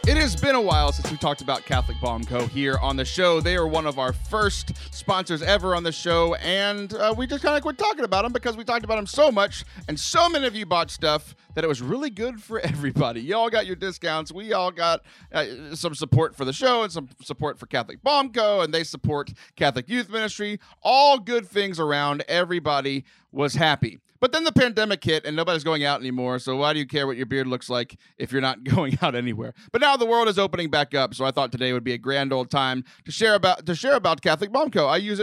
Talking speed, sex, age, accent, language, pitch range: 245 wpm, male, 30-49, American, English, 135-210 Hz